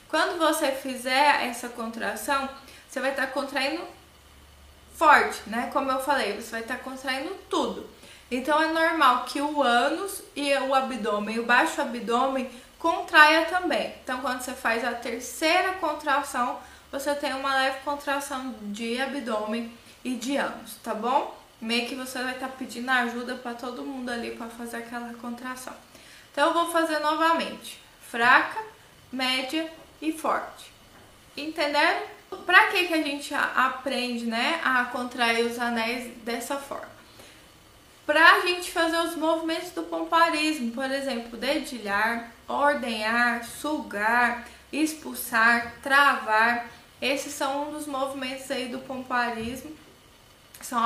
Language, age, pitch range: Portuguese, 20-39, 240-300 Hz